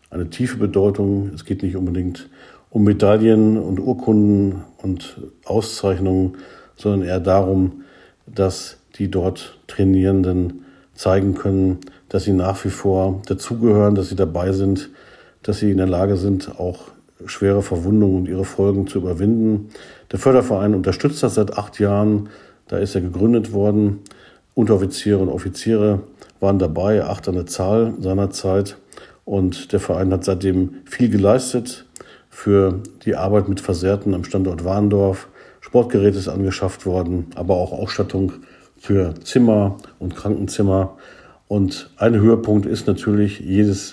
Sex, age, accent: male, 50-69, German